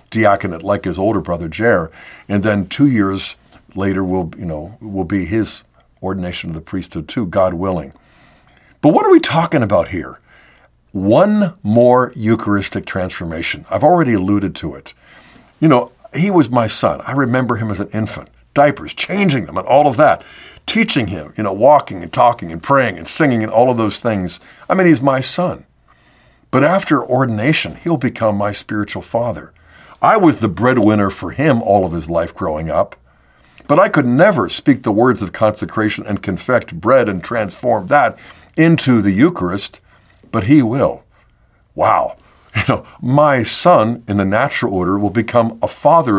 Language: English